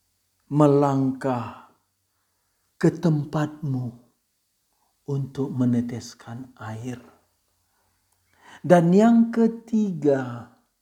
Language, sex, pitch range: Indonesian, male, 130-195 Hz